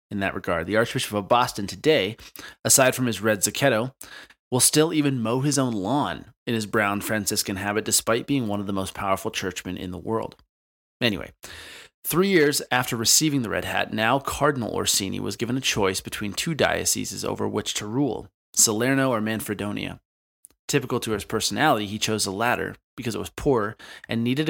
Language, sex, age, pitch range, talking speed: English, male, 30-49, 100-120 Hz, 185 wpm